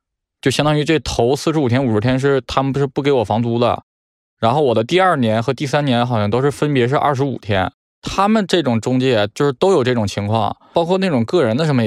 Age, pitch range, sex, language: 20-39, 115-145 Hz, male, Chinese